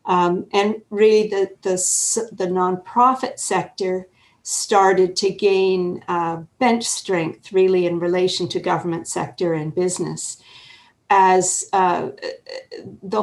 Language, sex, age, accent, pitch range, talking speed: English, female, 50-69, American, 175-205 Hz, 115 wpm